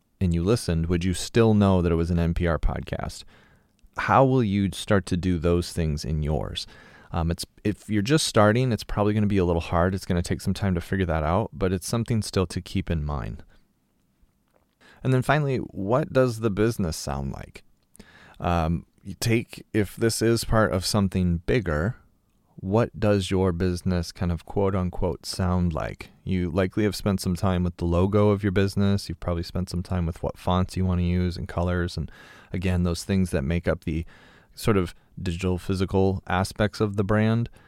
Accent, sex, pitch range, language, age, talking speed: American, male, 85-105 Hz, English, 30-49, 200 wpm